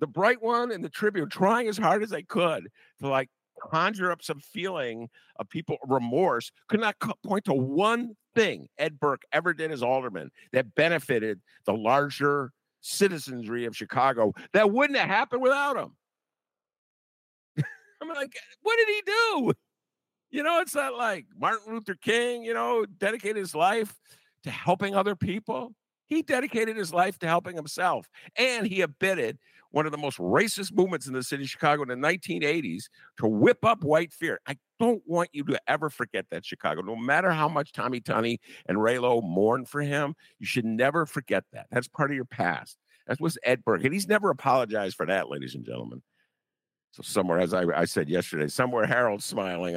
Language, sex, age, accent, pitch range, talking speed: English, male, 50-69, American, 135-220 Hz, 185 wpm